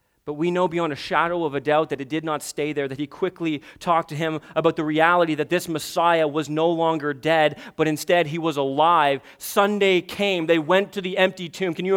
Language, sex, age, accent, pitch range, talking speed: English, male, 30-49, American, 195-290 Hz, 230 wpm